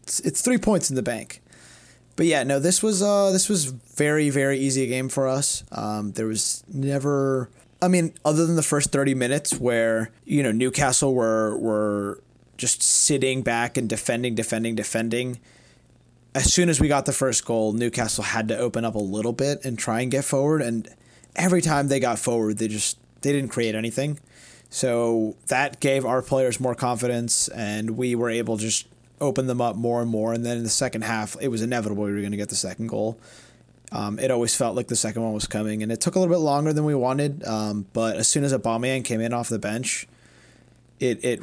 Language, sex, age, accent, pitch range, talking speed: English, male, 30-49, American, 110-140 Hz, 215 wpm